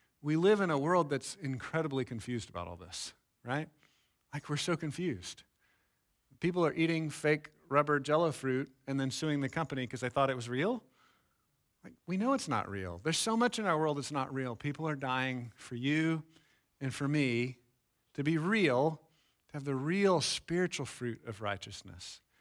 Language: English